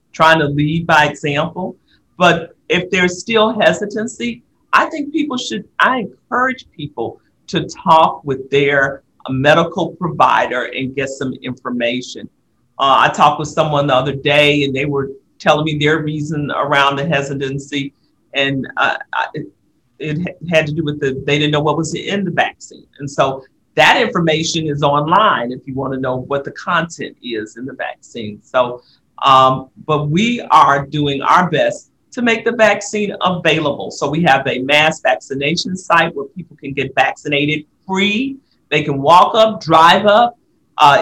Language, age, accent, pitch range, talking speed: English, 50-69, American, 140-180 Hz, 165 wpm